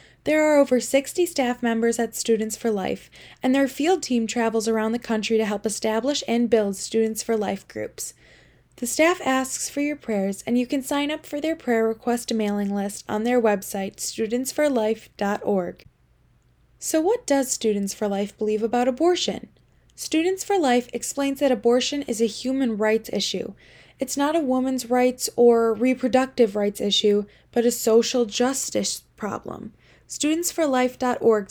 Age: 10-29